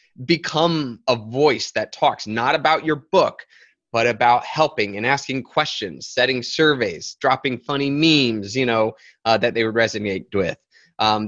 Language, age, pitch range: English, 20-39, 115-155 Hz